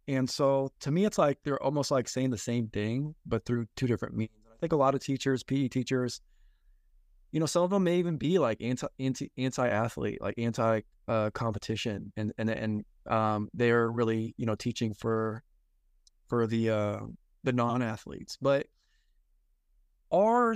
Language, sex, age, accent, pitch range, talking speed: English, male, 20-39, American, 115-140 Hz, 180 wpm